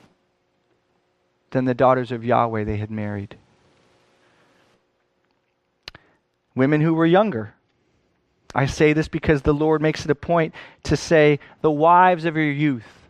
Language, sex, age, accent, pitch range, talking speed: English, male, 30-49, American, 115-160 Hz, 135 wpm